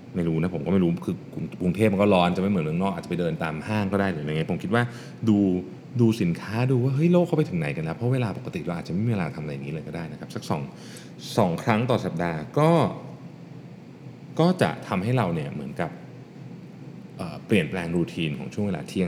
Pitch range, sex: 95-140 Hz, male